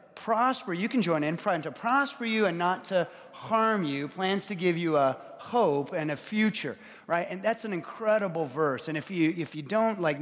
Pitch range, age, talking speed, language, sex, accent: 165-225 Hz, 30-49, 210 wpm, English, male, American